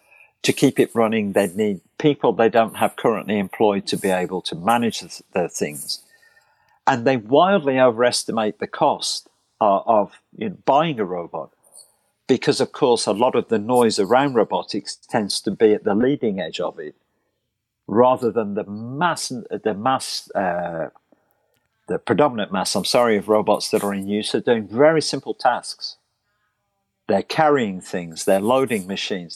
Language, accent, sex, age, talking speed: English, British, male, 50-69, 165 wpm